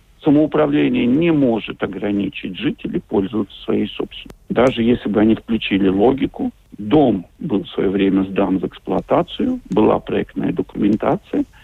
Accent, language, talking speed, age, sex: native, Russian, 130 wpm, 70-89, male